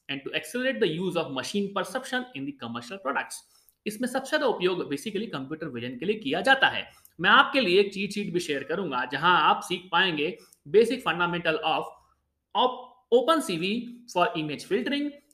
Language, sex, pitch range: Hindi, male, 160-240 Hz